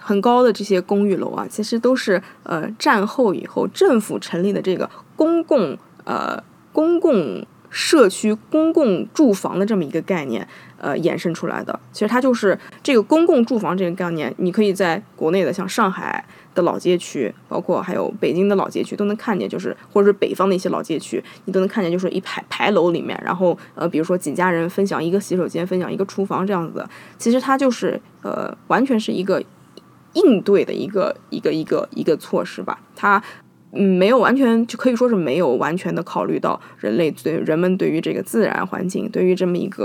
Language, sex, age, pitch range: Chinese, female, 20-39, 180-230 Hz